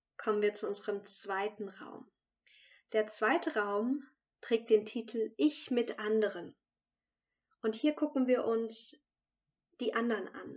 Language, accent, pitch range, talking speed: German, German, 210-260 Hz, 130 wpm